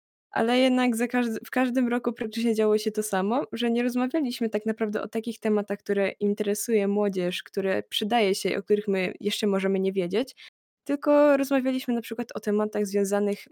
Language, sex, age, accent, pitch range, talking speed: Polish, female, 20-39, native, 200-245 Hz, 180 wpm